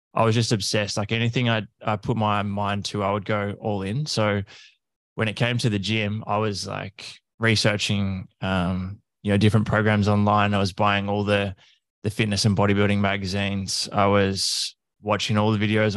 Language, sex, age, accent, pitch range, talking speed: English, male, 20-39, Australian, 100-110 Hz, 190 wpm